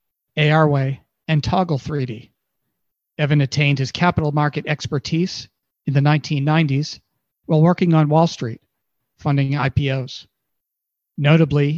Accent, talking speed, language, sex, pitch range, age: American, 110 wpm, English, male, 140-160 Hz, 40-59